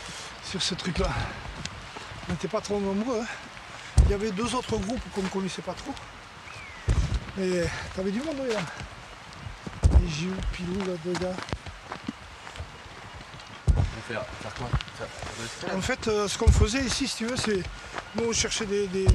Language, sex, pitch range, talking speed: French, male, 180-220 Hz, 145 wpm